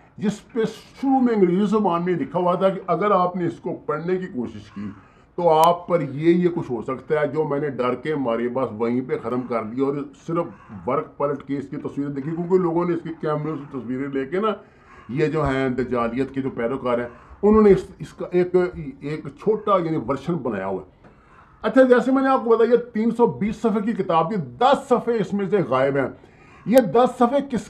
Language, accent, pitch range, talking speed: English, Indian, 145-200 Hz, 160 wpm